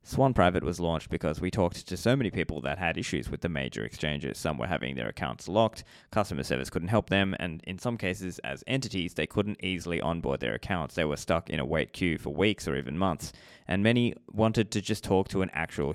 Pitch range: 75-105 Hz